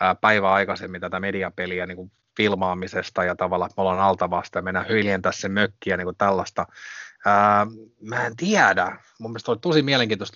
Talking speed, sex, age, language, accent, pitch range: 180 wpm, male, 30-49, Finnish, native, 95-120 Hz